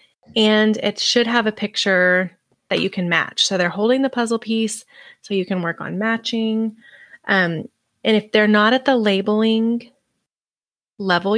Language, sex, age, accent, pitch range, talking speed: English, female, 20-39, American, 180-230 Hz, 165 wpm